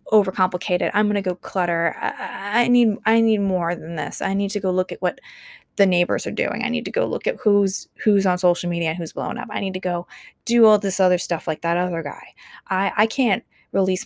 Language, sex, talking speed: English, female, 235 wpm